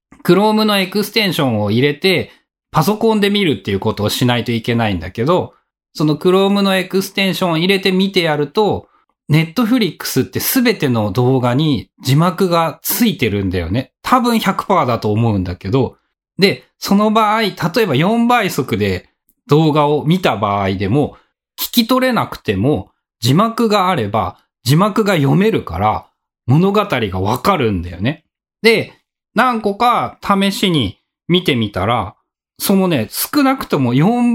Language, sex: Japanese, male